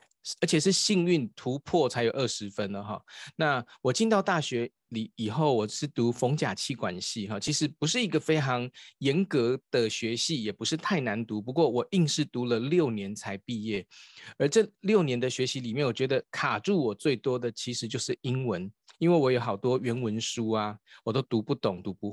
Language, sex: Chinese, male